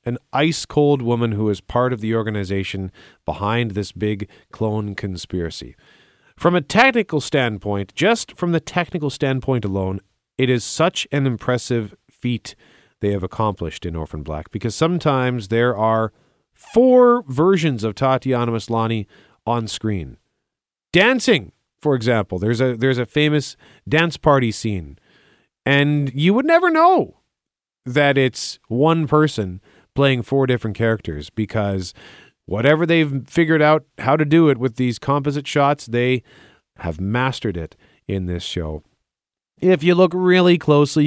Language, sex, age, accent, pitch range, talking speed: English, male, 40-59, American, 100-145 Hz, 140 wpm